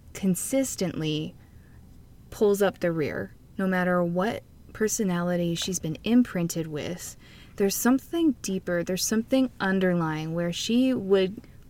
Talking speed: 115 wpm